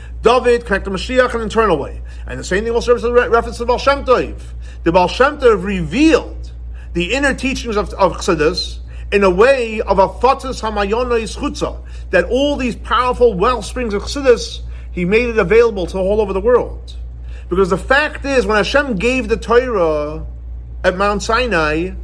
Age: 40-59